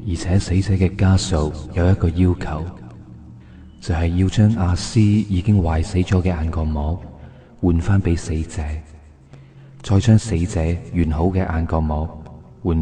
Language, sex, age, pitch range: Chinese, male, 20-39, 80-100 Hz